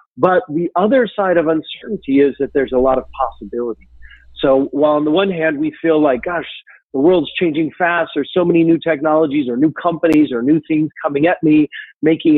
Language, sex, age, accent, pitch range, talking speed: English, male, 40-59, American, 130-170 Hz, 205 wpm